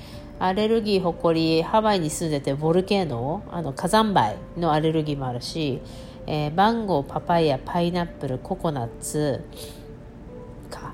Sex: female